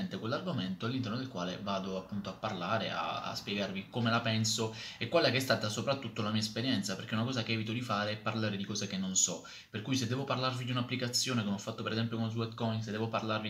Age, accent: 20-39, native